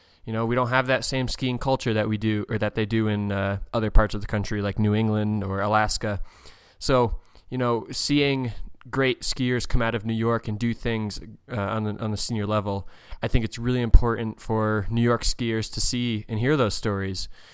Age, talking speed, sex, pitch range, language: 20-39, 215 wpm, male, 105-120 Hz, English